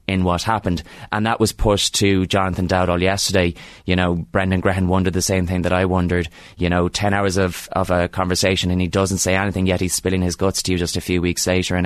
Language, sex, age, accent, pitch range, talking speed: English, male, 20-39, Irish, 90-110 Hz, 245 wpm